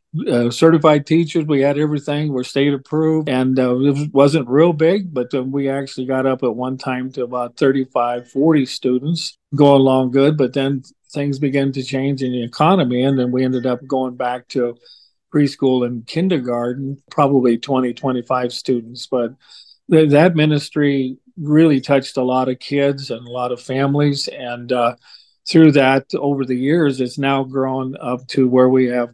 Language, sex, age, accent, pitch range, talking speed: English, male, 50-69, American, 125-145 Hz, 175 wpm